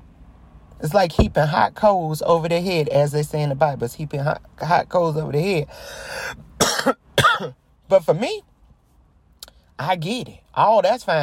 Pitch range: 125-180 Hz